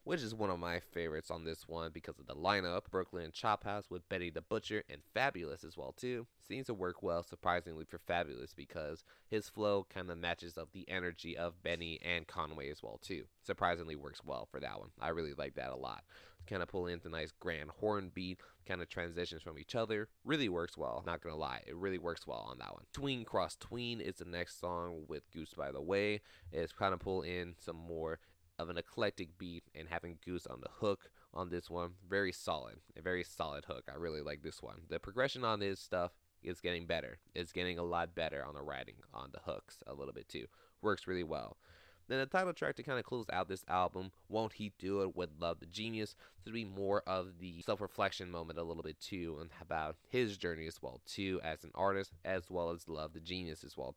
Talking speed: 225 wpm